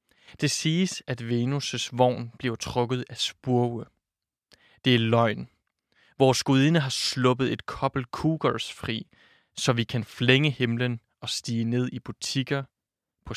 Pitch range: 120-140 Hz